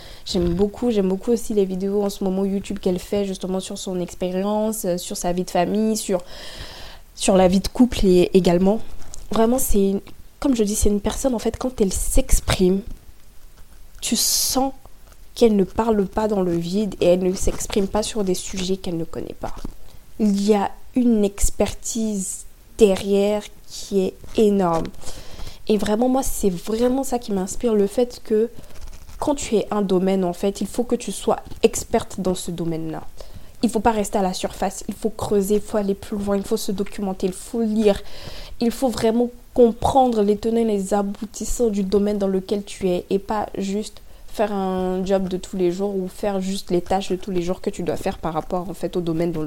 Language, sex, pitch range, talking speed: French, female, 185-220 Hz, 205 wpm